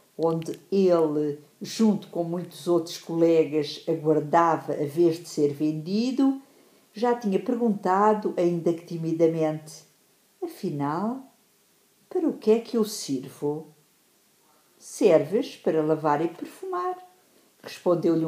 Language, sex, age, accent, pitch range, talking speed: English, female, 50-69, Brazilian, 160-215 Hz, 110 wpm